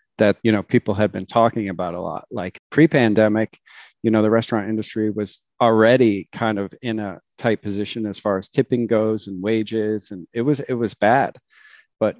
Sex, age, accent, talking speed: male, 40-59, American, 190 wpm